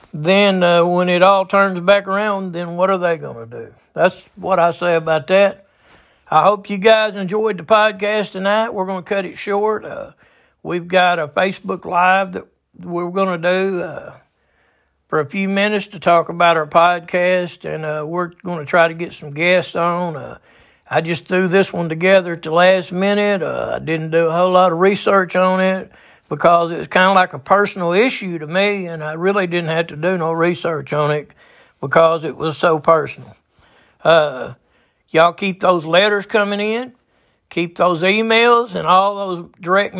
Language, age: English, 60-79